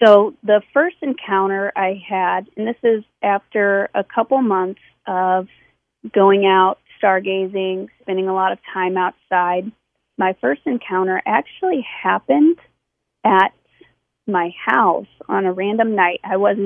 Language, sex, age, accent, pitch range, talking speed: English, female, 30-49, American, 185-225 Hz, 135 wpm